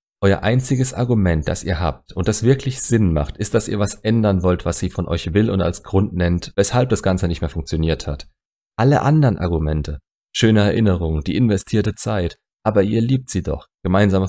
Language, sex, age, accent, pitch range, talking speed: German, male, 30-49, German, 85-105 Hz, 195 wpm